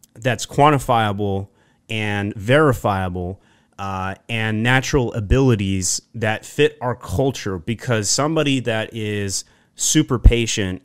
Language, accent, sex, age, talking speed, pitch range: English, American, male, 30-49, 100 wpm, 100-130 Hz